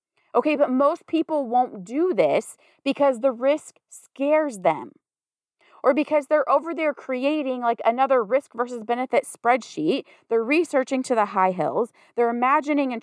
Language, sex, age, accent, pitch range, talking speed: English, female, 30-49, American, 230-290 Hz, 150 wpm